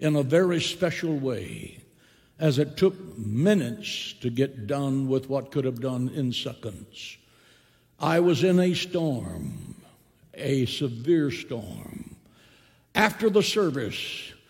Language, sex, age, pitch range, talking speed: English, male, 60-79, 135-180 Hz, 125 wpm